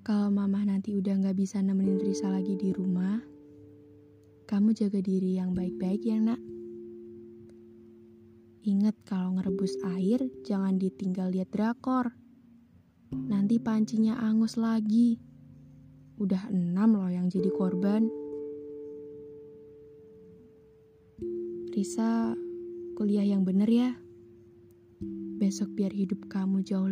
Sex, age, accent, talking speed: female, 20-39, native, 105 wpm